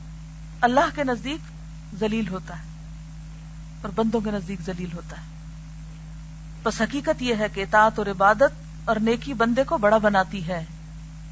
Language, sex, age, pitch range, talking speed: Urdu, female, 40-59, 160-230 Hz, 110 wpm